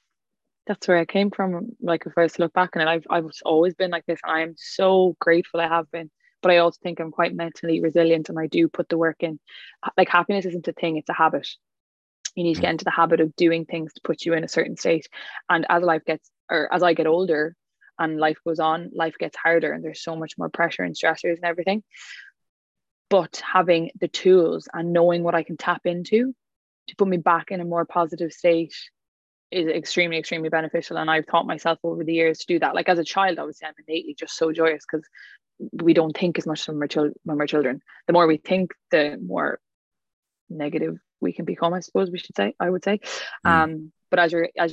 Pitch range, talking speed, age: 160-175 Hz, 225 wpm, 20-39